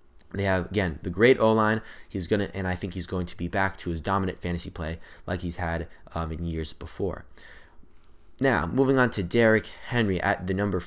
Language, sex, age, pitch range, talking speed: English, male, 20-39, 85-105 Hz, 215 wpm